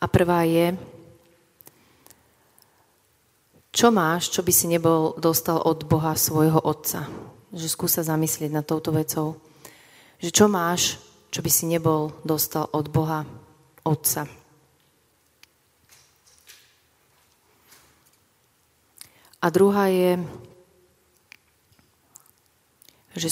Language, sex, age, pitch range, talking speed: Slovak, female, 30-49, 150-170 Hz, 95 wpm